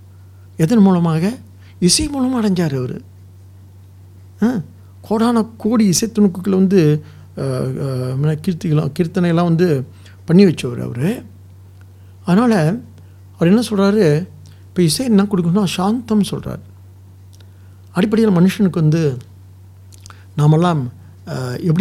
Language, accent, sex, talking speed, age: English, Indian, male, 90 wpm, 60-79